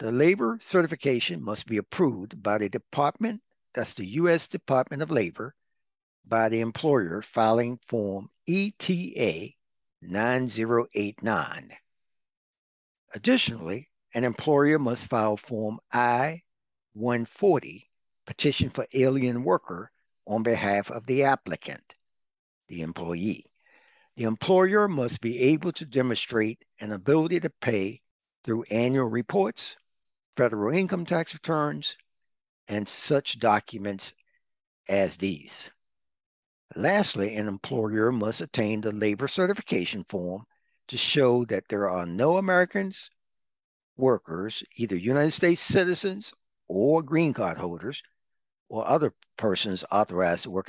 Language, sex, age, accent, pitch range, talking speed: English, male, 60-79, American, 105-155 Hz, 110 wpm